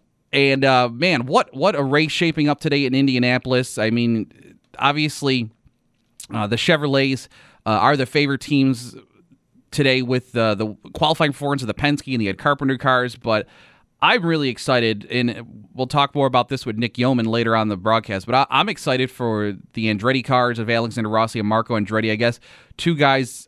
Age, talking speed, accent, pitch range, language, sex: 30-49, 185 wpm, American, 110-135 Hz, English, male